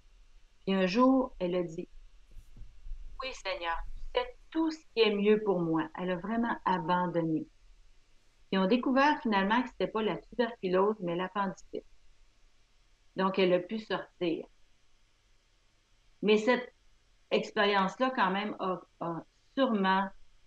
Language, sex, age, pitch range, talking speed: French, female, 50-69, 120-195 Hz, 140 wpm